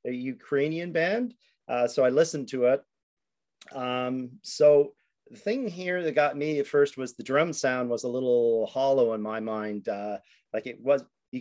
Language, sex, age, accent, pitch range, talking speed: English, male, 30-49, American, 115-145 Hz, 185 wpm